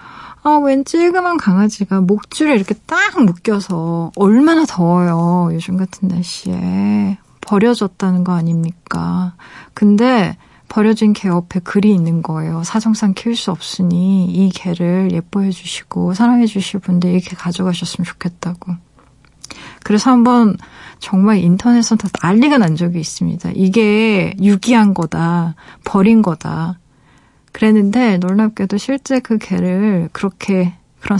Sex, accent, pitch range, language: female, native, 175-215 Hz, Korean